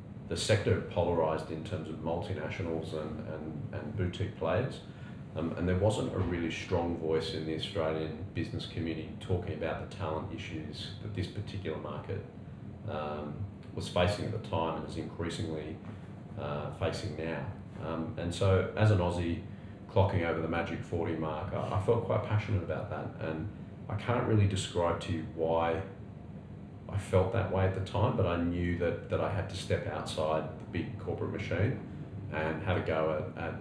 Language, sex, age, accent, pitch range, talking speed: English, male, 30-49, Australian, 80-105 Hz, 180 wpm